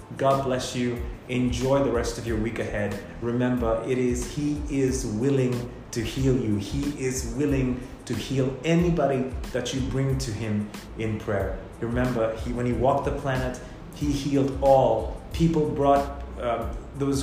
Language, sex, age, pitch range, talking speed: English, male, 30-49, 115-140 Hz, 160 wpm